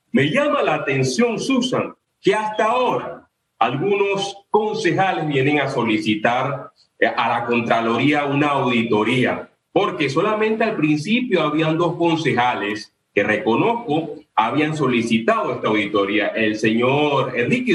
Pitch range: 125-185 Hz